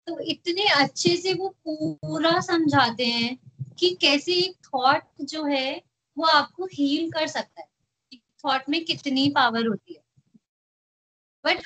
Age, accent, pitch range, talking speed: 30-49, native, 235-325 Hz, 140 wpm